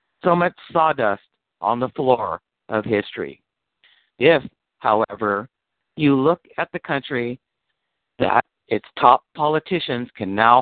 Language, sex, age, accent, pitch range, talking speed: English, male, 50-69, American, 110-150 Hz, 120 wpm